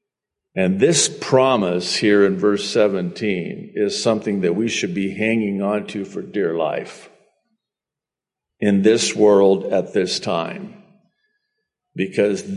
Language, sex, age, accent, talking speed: English, male, 50-69, American, 125 wpm